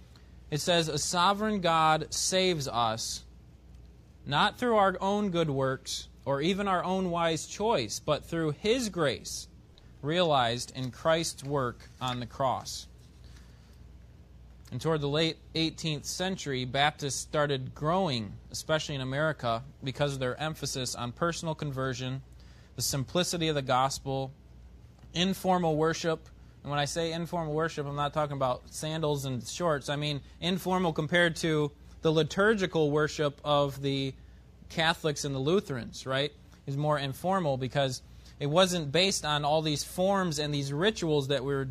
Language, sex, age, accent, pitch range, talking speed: English, male, 20-39, American, 125-165 Hz, 145 wpm